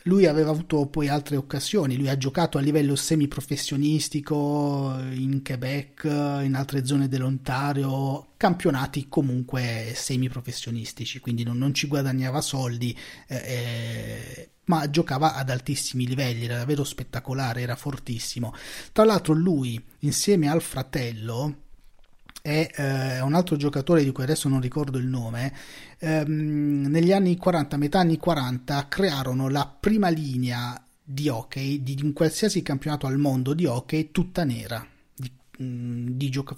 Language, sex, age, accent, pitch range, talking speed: Italian, male, 30-49, native, 125-155 Hz, 135 wpm